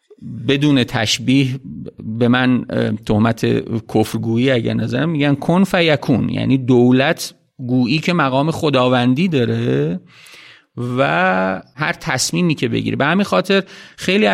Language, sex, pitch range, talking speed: Persian, male, 120-170 Hz, 115 wpm